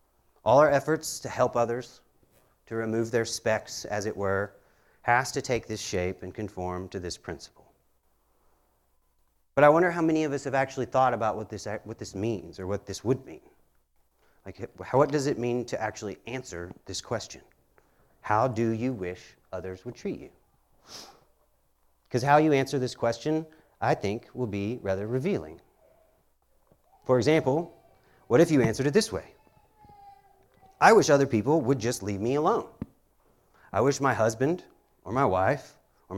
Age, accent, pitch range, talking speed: 40-59, American, 95-130 Hz, 170 wpm